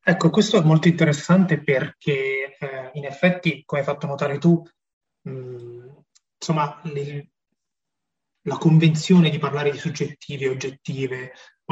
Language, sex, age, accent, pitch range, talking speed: Italian, male, 30-49, native, 135-165 Hz, 130 wpm